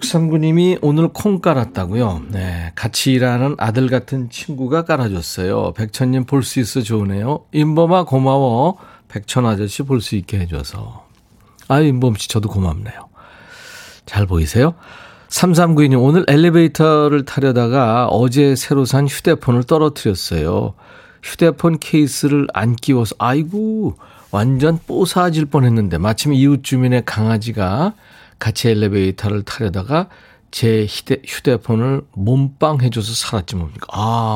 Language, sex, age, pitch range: Korean, male, 40-59, 105-145 Hz